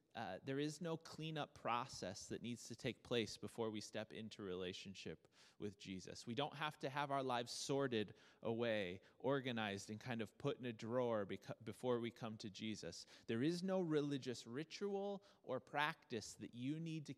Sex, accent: male, American